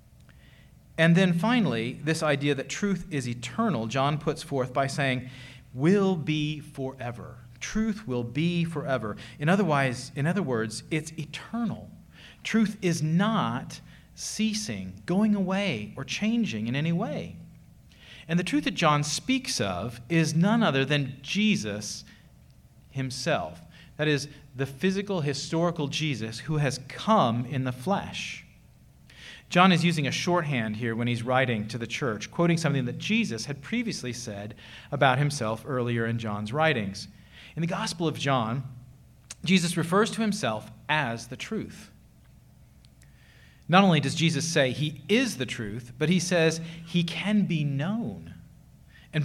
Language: English